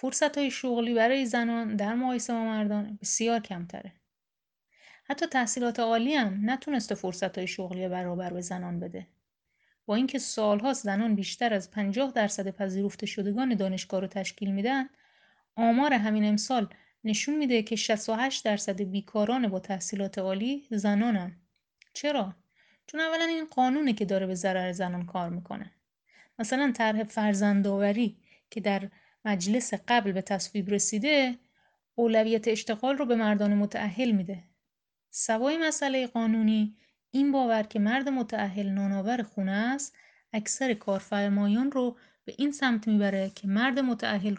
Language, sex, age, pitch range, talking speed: Persian, female, 30-49, 200-245 Hz, 130 wpm